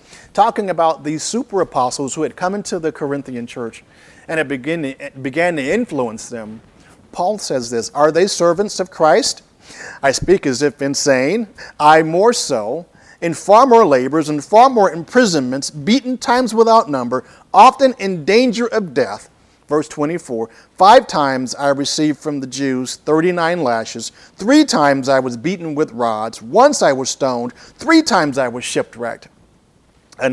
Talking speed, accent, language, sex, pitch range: 160 wpm, American, English, male, 140-205 Hz